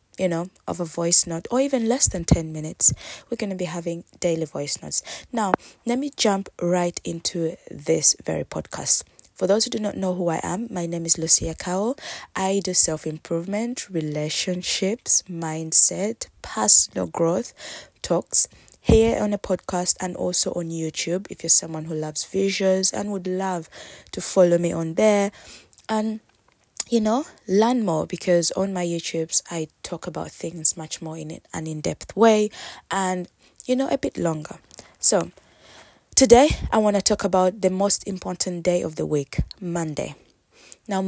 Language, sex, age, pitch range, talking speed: English, female, 20-39, 165-200 Hz, 165 wpm